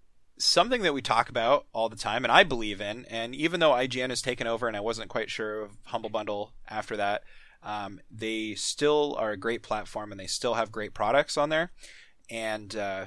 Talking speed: 205 wpm